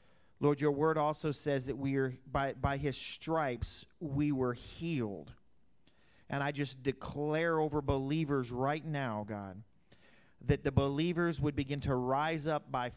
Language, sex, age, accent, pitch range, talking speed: English, male, 40-59, American, 125-155 Hz, 155 wpm